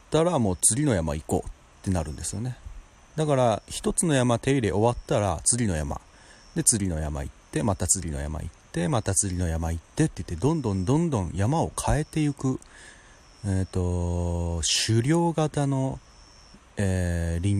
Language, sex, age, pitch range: Japanese, male, 40-59, 85-135 Hz